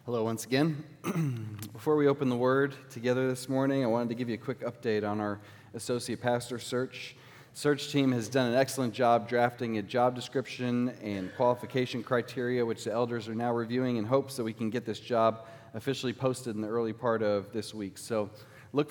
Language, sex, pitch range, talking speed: English, male, 110-130 Hz, 200 wpm